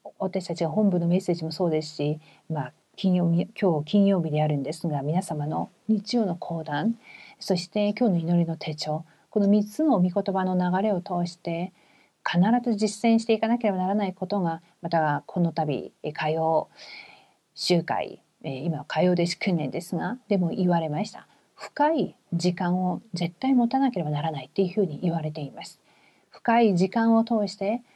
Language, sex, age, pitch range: Korean, female, 40-59, 170-215 Hz